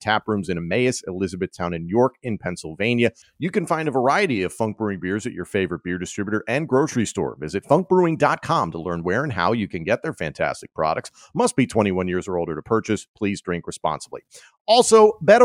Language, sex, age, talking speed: English, male, 40-59, 200 wpm